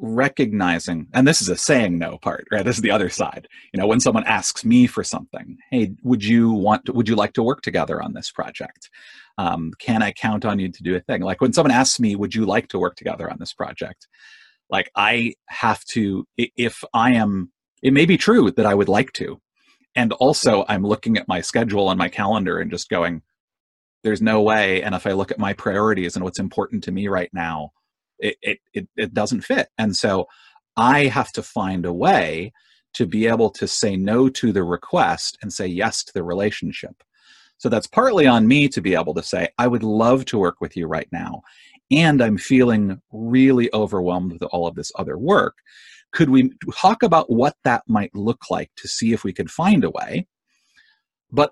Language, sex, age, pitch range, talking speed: English, male, 30-49, 100-130 Hz, 210 wpm